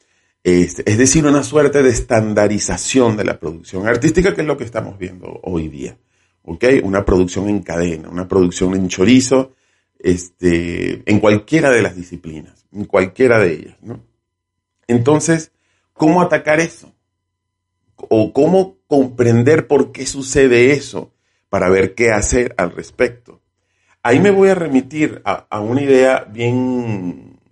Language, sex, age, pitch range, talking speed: Spanish, male, 40-59, 90-125 Hz, 135 wpm